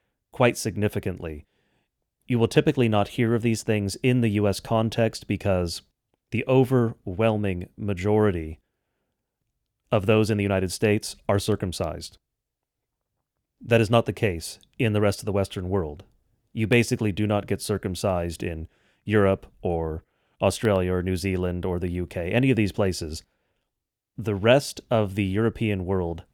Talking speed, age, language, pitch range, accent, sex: 145 wpm, 30-49, English, 95-115 Hz, American, male